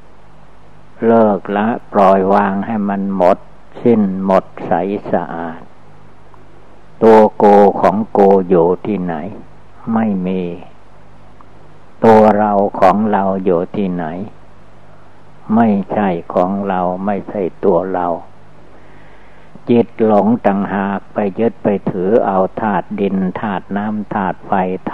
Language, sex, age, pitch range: Thai, male, 60-79, 95-110 Hz